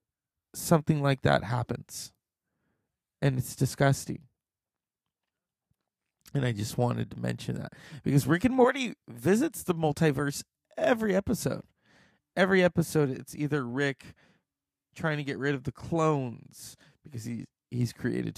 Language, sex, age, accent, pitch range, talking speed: English, male, 20-39, American, 115-155 Hz, 125 wpm